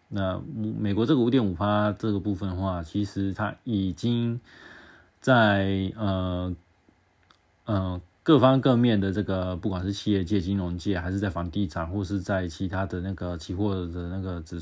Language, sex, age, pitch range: Chinese, male, 20-39, 90-110 Hz